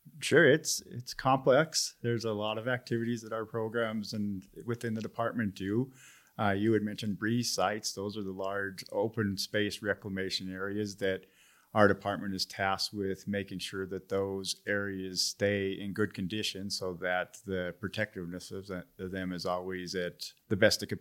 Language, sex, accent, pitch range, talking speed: English, male, American, 90-105 Hz, 170 wpm